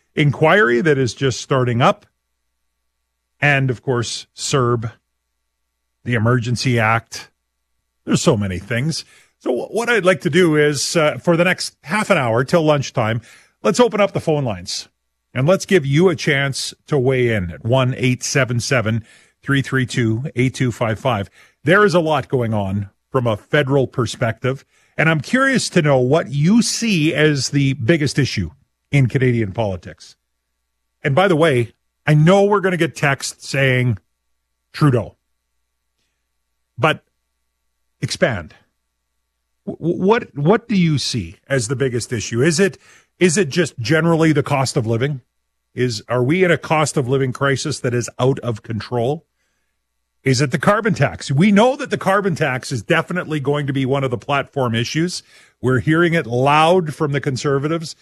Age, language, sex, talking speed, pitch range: 40-59, English, male, 155 wpm, 110-155 Hz